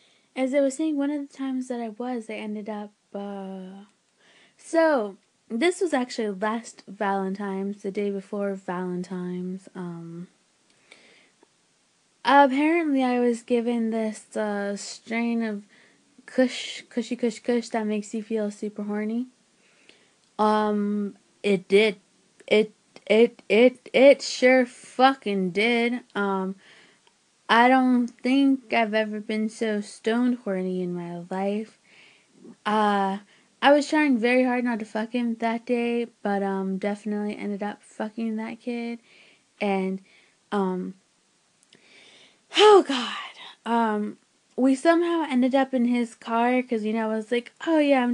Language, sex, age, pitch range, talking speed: English, female, 20-39, 205-245 Hz, 135 wpm